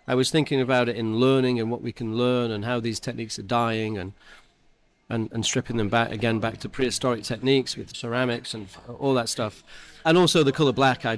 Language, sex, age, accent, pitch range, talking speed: English, male, 30-49, British, 115-145 Hz, 220 wpm